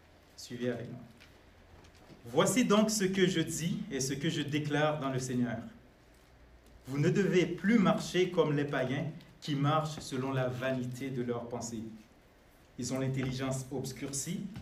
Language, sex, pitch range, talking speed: French, male, 130-165 Hz, 145 wpm